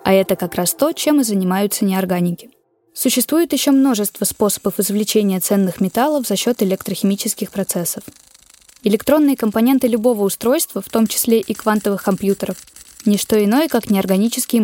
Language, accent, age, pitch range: Russian, native, 10-29, 195-245 Hz